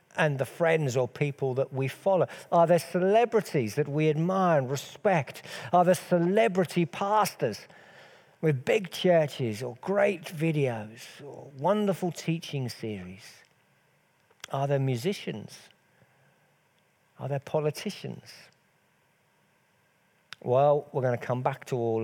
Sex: male